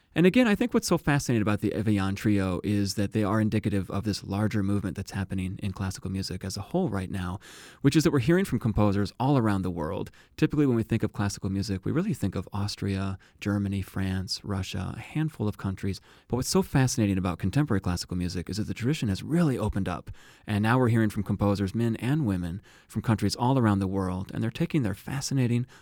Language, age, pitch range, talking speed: English, 30-49, 95-120 Hz, 225 wpm